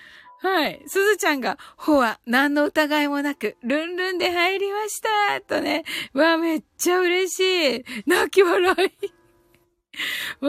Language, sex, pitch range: Japanese, female, 205-335 Hz